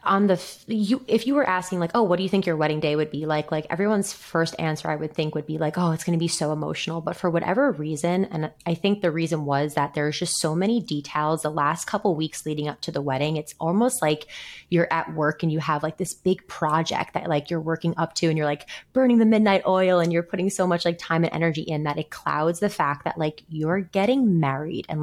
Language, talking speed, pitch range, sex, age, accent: English, 260 wpm, 150-180 Hz, female, 20-39, American